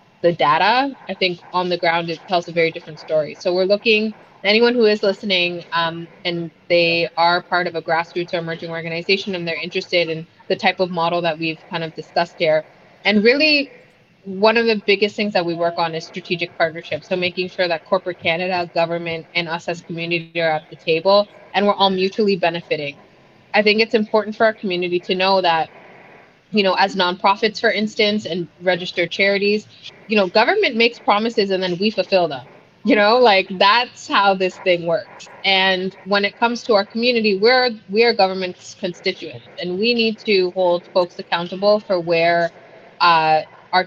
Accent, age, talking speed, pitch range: American, 20-39, 190 wpm, 170-200 Hz